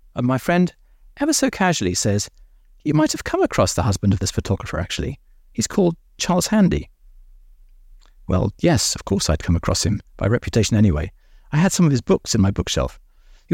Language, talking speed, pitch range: English, 190 wpm, 90-145 Hz